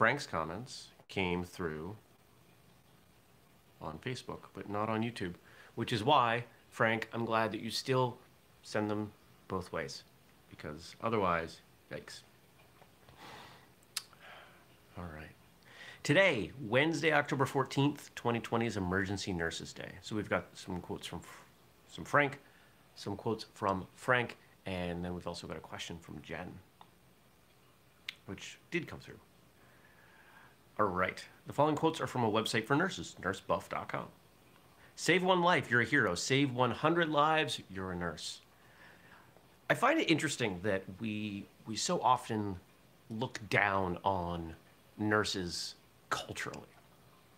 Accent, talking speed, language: American, 125 wpm, English